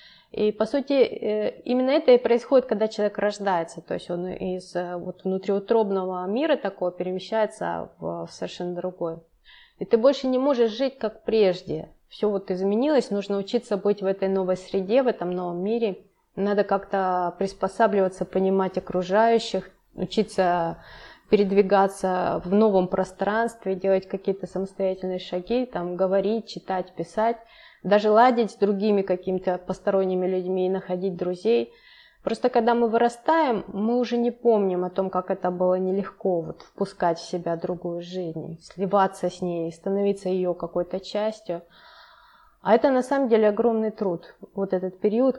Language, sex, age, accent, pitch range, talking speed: Russian, female, 20-39, native, 185-220 Hz, 145 wpm